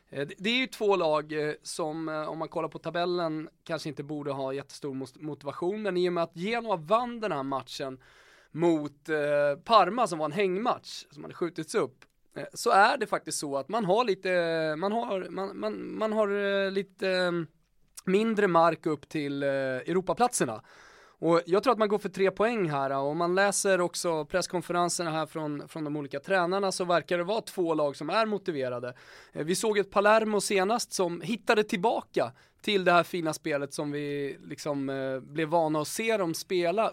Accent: Swedish